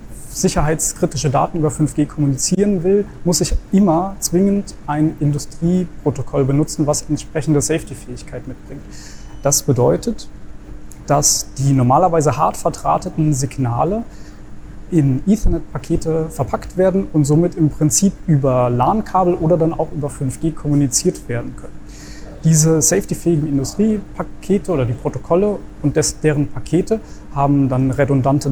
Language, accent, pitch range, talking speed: German, German, 140-170 Hz, 120 wpm